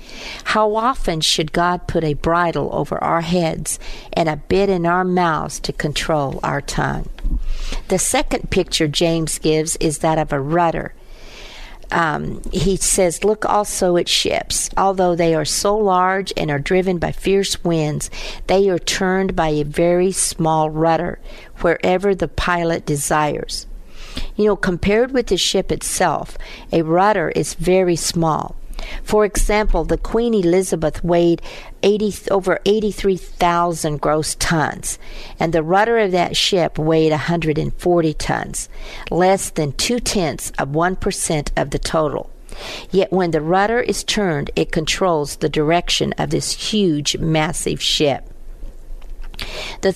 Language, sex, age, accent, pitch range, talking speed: English, female, 50-69, American, 160-195 Hz, 140 wpm